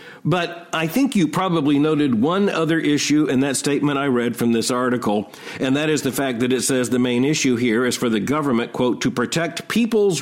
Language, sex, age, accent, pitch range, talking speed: English, male, 50-69, American, 130-165 Hz, 215 wpm